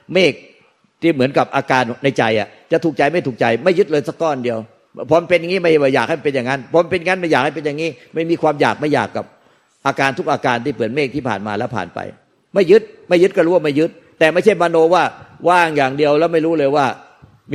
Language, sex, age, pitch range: Thai, male, 50-69, 130-165 Hz